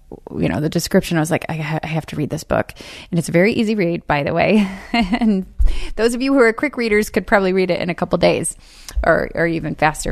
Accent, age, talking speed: American, 30-49, 255 wpm